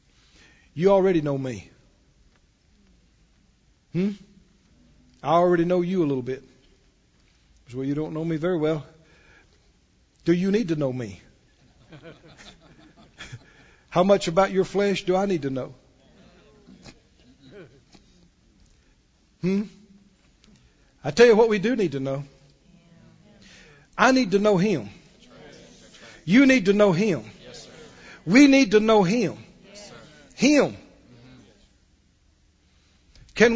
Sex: male